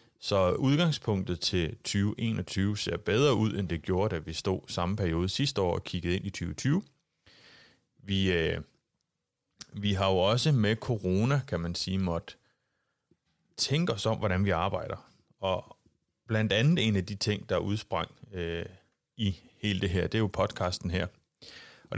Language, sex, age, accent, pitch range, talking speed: Danish, male, 30-49, native, 90-110 Hz, 165 wpm